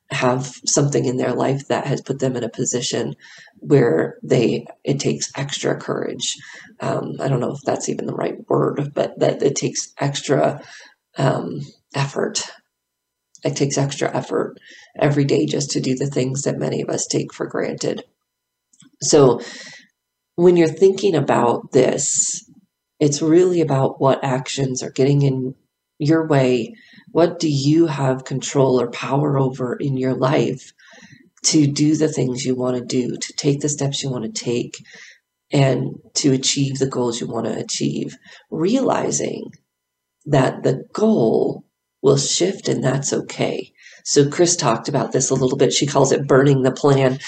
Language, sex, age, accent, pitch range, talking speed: English, female, 40-59, American, 130-150 Hz, 160 wpm